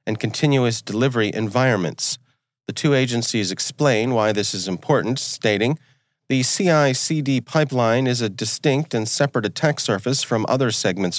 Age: 40-59